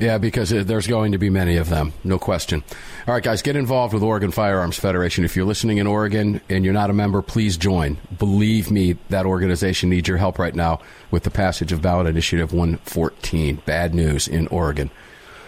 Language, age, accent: English, 40-59, American